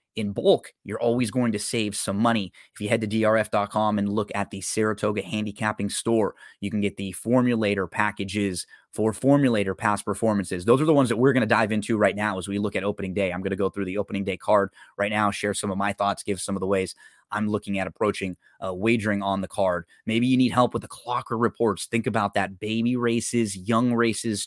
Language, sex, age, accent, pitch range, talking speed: English, male, 20-39, American, 100-115 Hz, 230 wpm